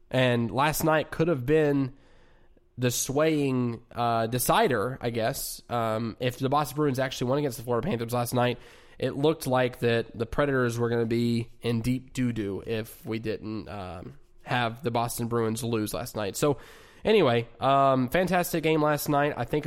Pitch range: 120-145 Hz